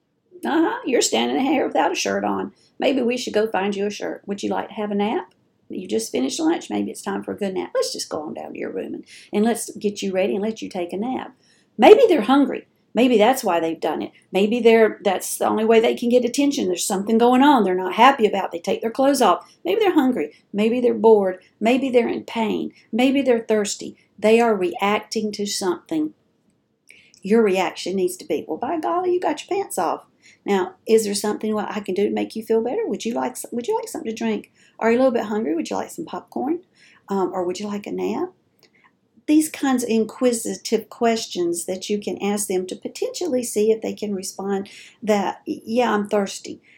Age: 50-69